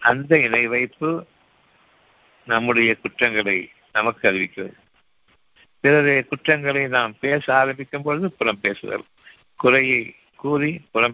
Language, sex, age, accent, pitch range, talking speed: Tamil, male, 60-79, native, 110-140 Hz, 95 wpm